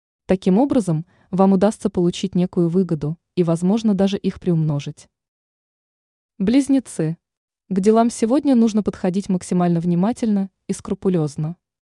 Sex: female